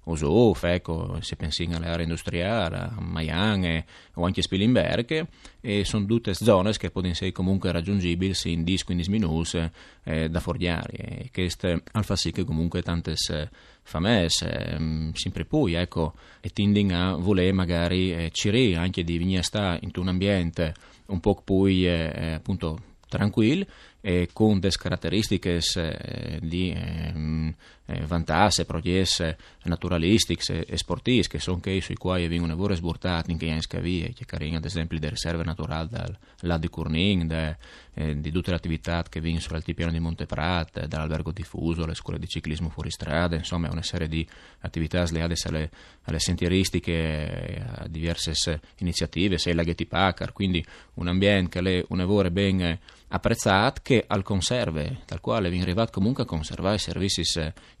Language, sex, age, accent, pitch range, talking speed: Italian, male, 20-39, native, 80-95 Hz, 165 wpm